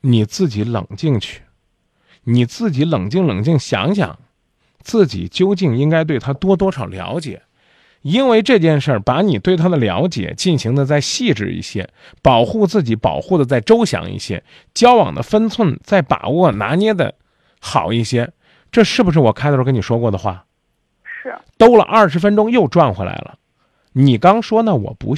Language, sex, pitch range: Chinese, male, 130-200 Hz